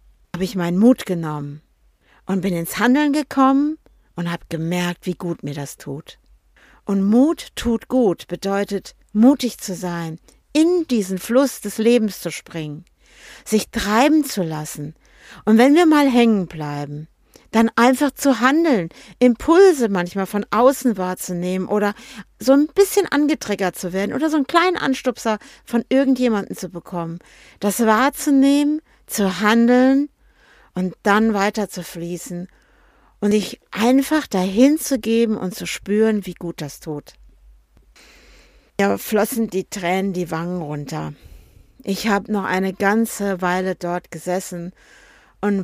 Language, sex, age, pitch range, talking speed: German, female, 50-69, 175-240 Hz, 140 wpm